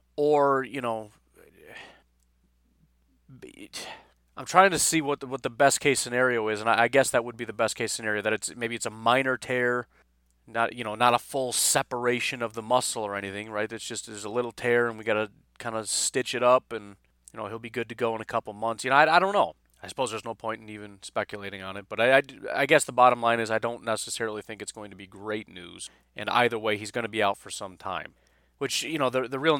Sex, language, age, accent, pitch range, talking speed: male, English, 30-49, American, 105-130 Hz, 250 wpm